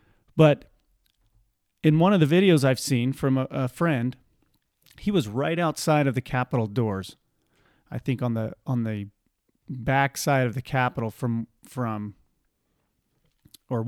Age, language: 40-59, English